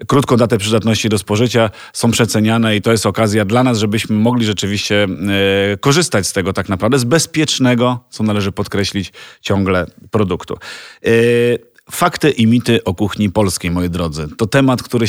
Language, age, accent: Polish, 40-59, native